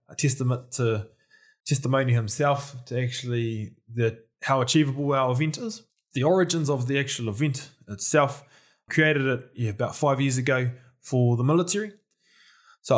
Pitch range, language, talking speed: 120-150 Hz, English, 135 wpm